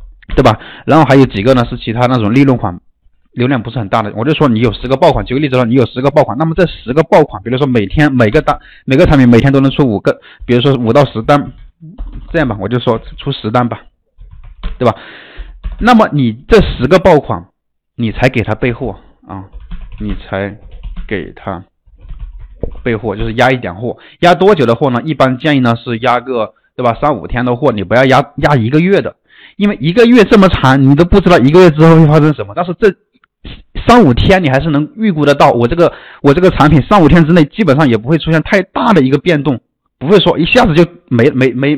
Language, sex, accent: Chinese, male, native